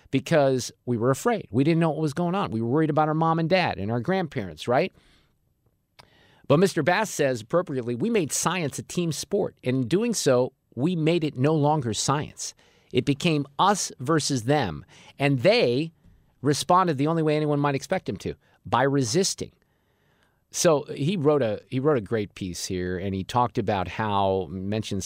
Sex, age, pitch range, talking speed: male, 50-69, 115-150 Hz, 185 wpm